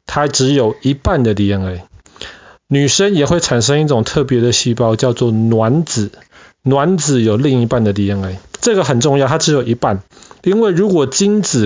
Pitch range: 110-150 Hz